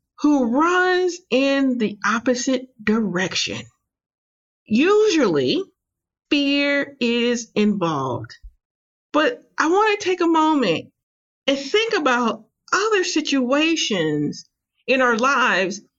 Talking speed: 95 wpm